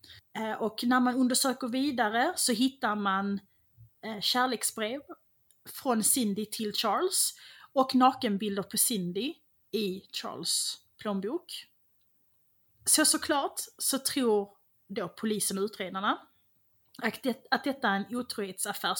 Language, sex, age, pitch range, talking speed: English, female, 30-49, 200-260 Hz, 110 wpm